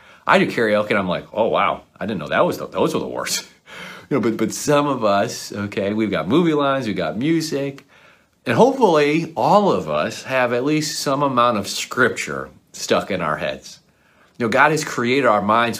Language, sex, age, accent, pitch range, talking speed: English, male, 30-49, American, 100-130 Hz, 215 wpm